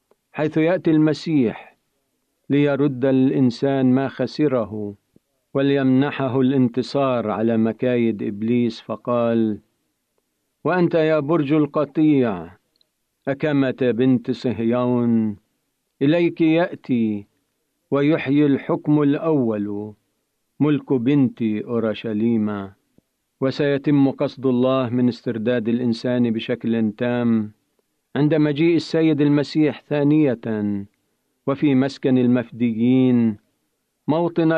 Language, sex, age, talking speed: Arabic, male, 50-69, 80 wpm